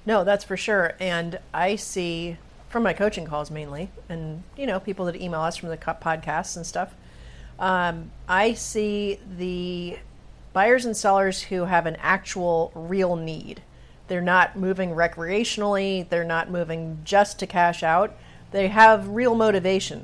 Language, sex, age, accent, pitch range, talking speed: English, female, 40-59, American, 170-225 Hz, 155 wpm